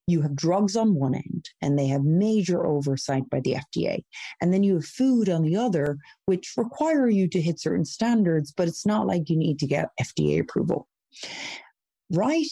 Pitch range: 145-190 Hz